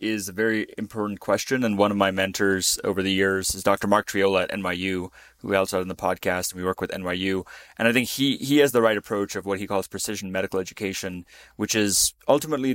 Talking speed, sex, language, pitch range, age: 230 wpm, male, English, 95-105 Hz, 20-39